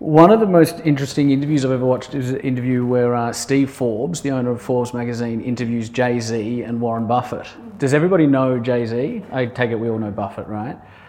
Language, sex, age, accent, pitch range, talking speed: English, male, 30-49, Australian, 110-135 Hz, 205 wpm